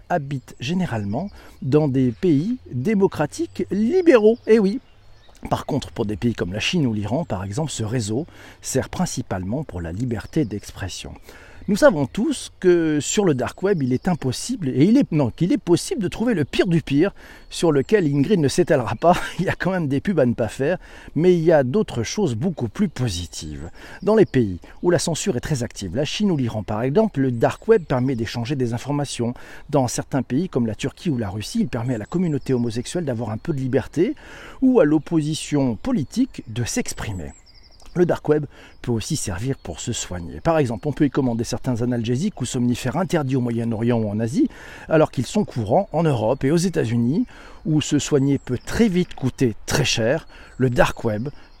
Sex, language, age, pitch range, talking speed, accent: male, French, 50-69, 120-170 Hz, 200 wpm, French